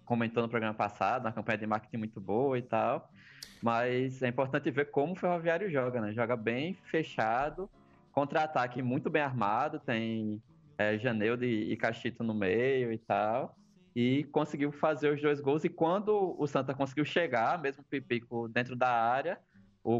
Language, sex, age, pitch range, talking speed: Portuguese, male, 20-39, 115-155 Hz, 170 wpm